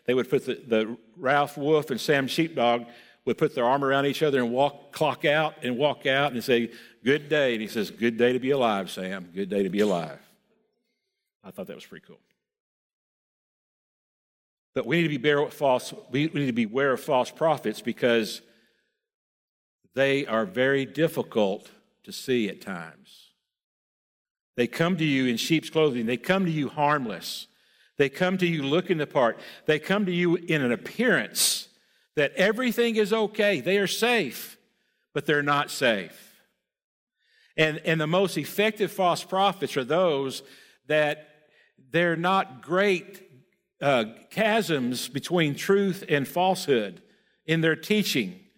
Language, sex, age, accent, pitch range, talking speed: English, male, 50-69, American, 125-185 Hz, 160 wpm